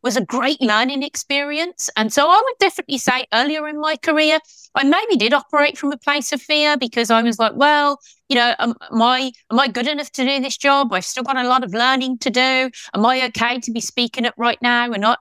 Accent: British